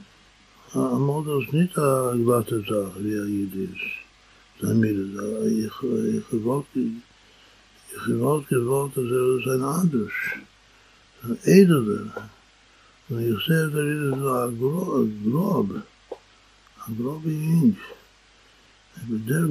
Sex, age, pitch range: male, 60-79, 115-145 Hz